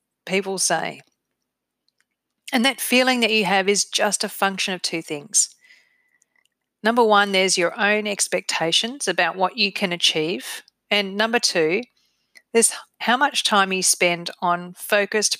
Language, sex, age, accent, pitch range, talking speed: English, female, 40-59, Australian, 170-220 Hz, 145 wpm